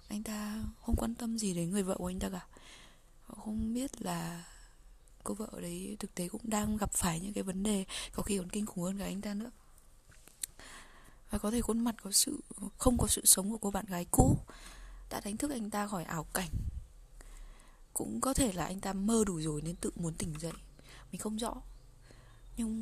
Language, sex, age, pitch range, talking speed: Vietnamese, female, 20-39, 175-225 Hz, 215 wpm